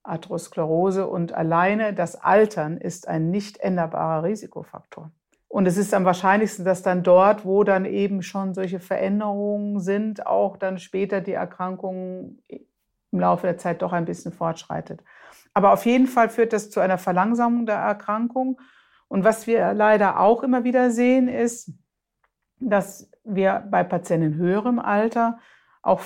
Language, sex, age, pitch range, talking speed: German, female, 50-69, 180-230 Hz, 150 wpm